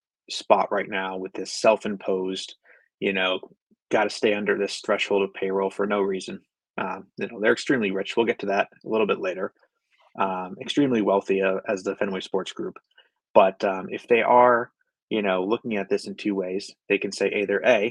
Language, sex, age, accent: English, male, 20-39, American